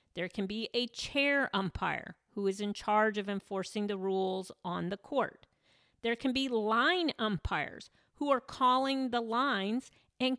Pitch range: 195-250 Hz